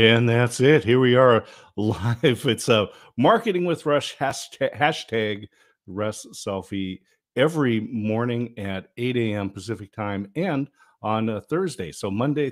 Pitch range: 100-130 Hz